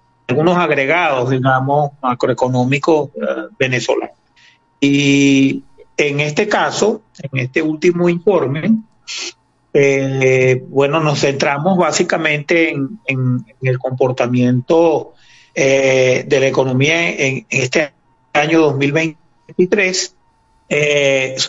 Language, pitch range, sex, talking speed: Spanish, 130-160 Hz, male, 85 wpm